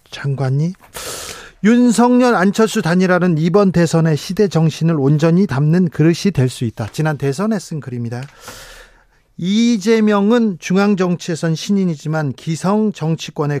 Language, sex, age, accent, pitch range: Korean, male, 40-59, native, 145-200 Hz